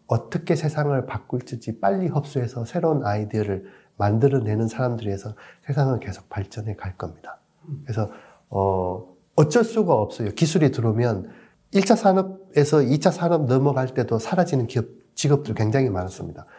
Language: Korean